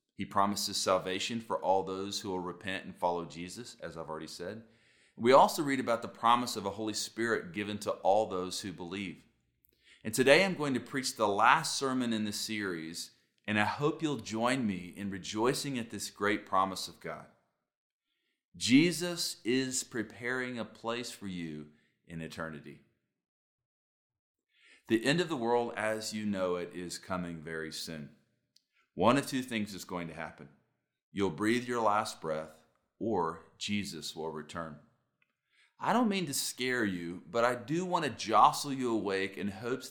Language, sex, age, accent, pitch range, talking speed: English, male, 40-59, American, 90-120 Hz, 170 wpm